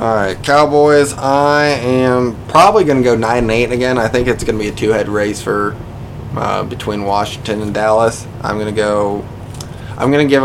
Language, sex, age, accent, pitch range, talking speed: English, male, 20-39, American, 110-130 Hz, 190 wpm